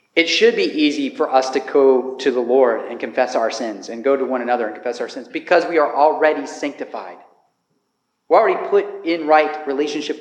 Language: English